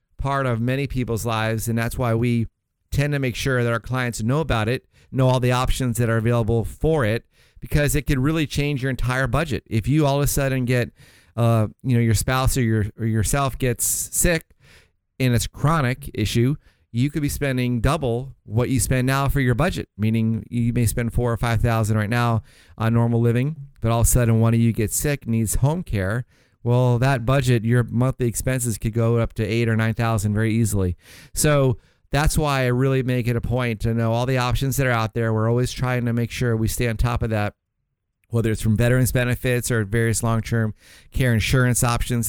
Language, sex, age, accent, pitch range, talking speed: English, male, 40-59, American, 115-130 Hz, 215 wpm